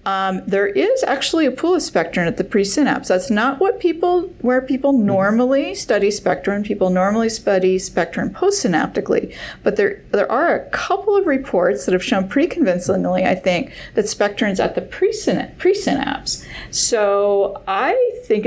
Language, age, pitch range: English, 50-69, 185-260 Hz